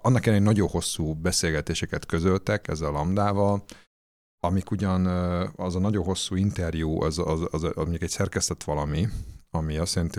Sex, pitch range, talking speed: male, 80-100 Hz, 165 wpm